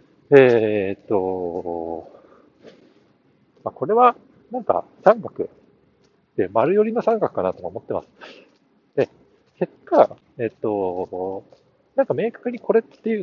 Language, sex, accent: Japanese, male, native